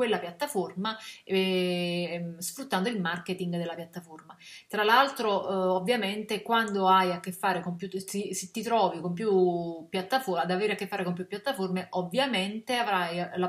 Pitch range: 180-205 Hz